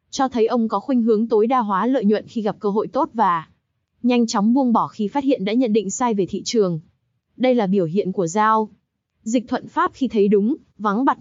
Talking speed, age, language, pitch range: 240 wpm, 20-39, Vietnamese, 205-255 Hz